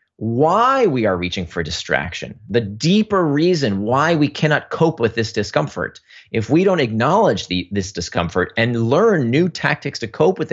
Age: 30-49